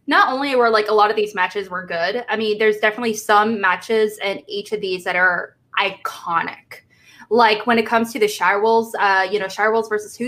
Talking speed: 215 wpm